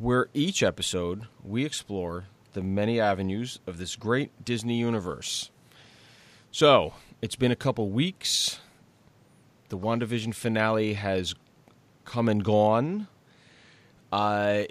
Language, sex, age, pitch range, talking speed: English, male, 30-49, 95-125 Hz, 110 wpm